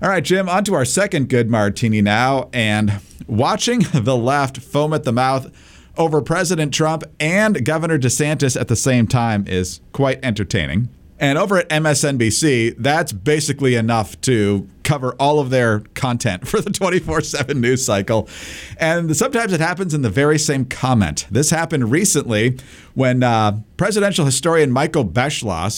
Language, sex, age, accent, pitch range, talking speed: English, male, 50-69, American, 110-150 Hz, 160 wpm